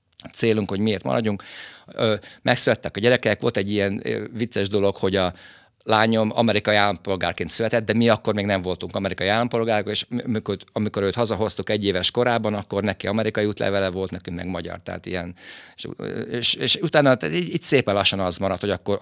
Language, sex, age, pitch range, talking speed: Hungarian, male, 50-69, 95-110 Hz, 175 wpm